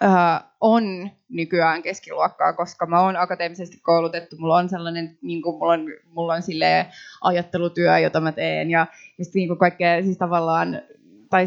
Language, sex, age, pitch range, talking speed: Finnish, female, 20-39, 175-210 Hz, 145 wpm